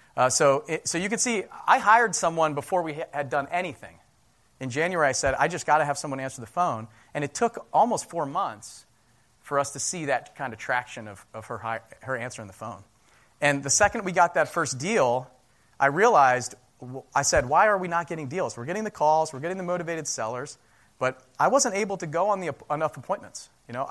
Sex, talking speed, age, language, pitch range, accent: male, 225 wpm, 30-49, English, 120-165 Hz, American